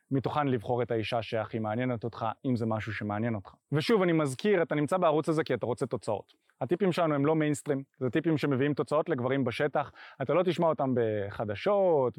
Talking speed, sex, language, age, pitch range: 190 wpm, male, Hebrew, 20-39, 125-185 Hz